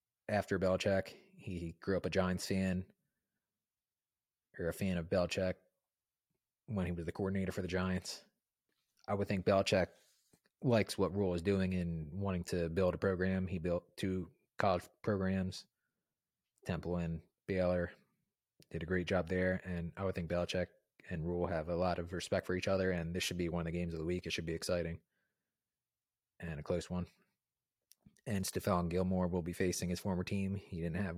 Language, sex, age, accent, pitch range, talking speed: English, male, 30-49, American, 85-95 Hz, 185 wpm